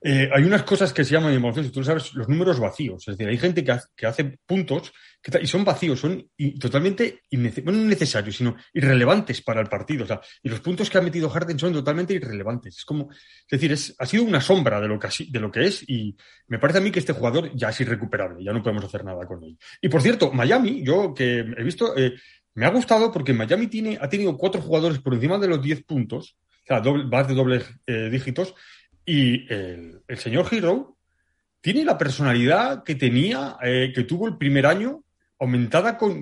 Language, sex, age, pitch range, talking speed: Spanish, male, 30-49, 120-170 Hz, 225 wpm